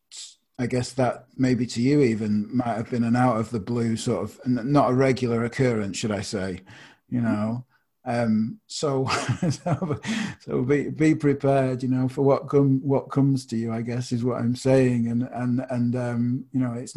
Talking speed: 190 wpm